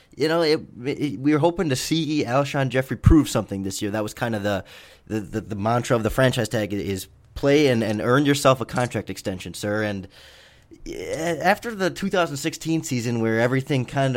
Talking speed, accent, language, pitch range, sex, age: 195 wpm, American, English, 105-130 Hz, male, 20-39